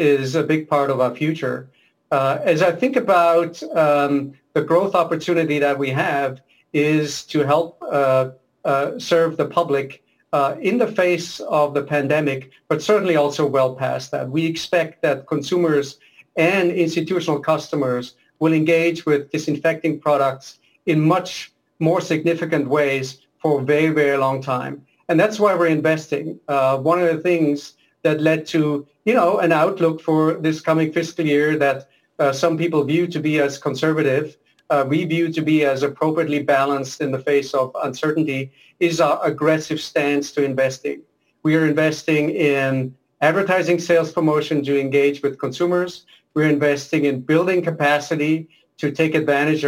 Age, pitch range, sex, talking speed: 50-69, 140-165 Hz, male, 155 wpm